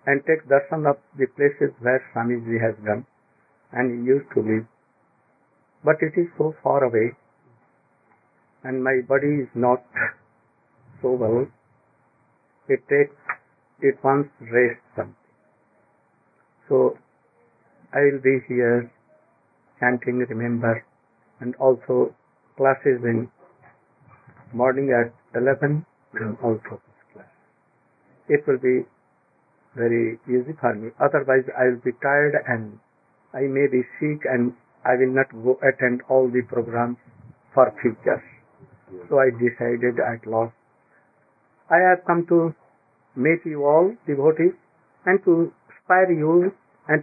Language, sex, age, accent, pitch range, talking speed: English, male, 60-79, Indian, 125-155 Hz, 125 wpm